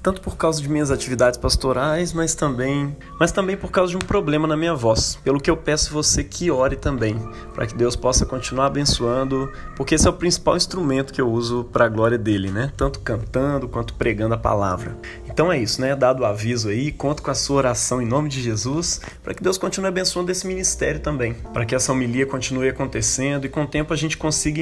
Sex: male